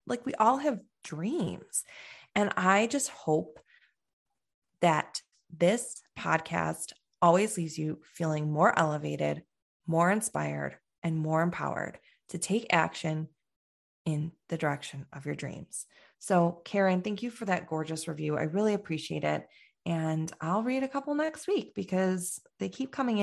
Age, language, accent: 20-39, English, American